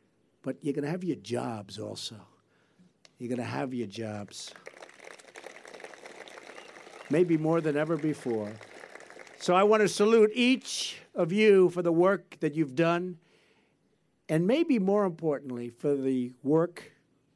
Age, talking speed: 60-79, 140 wpm